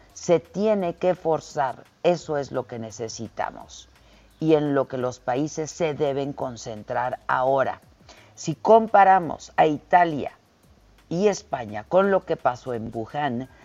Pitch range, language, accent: 130-190 Hz, Spanish, Mexican